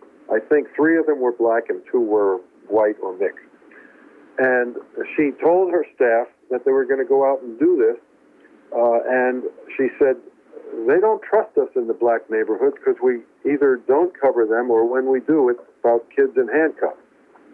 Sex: male